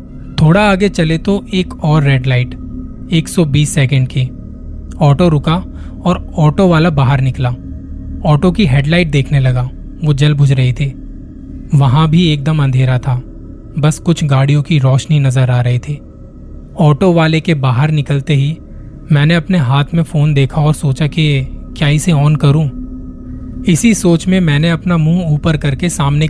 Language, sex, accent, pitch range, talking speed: Hindi, male, native, 130-160 Hz, 160 wpm